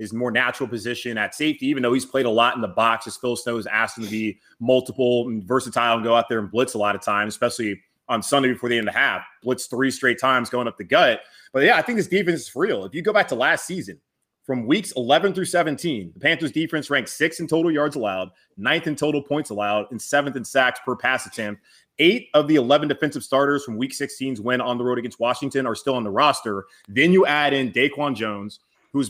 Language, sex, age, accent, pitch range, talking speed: English, male, 20-39, American, 115-145 Hz, 250 wpm